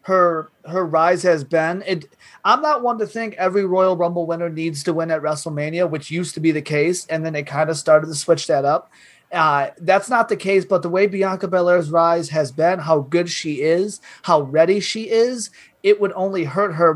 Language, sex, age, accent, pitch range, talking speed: English, male, 30-49, American, 170-210 Hz, 220 wpm